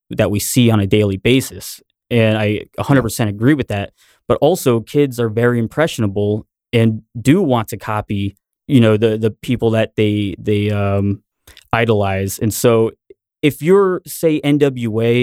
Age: 20-39